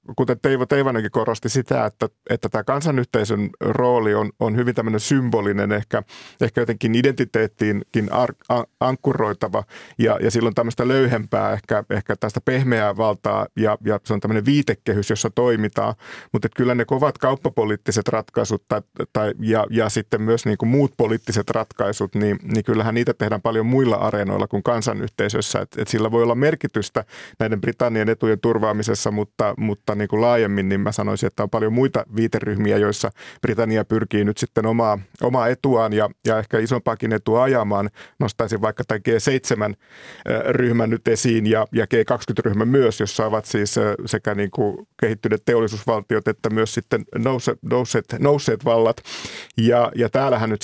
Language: Finnish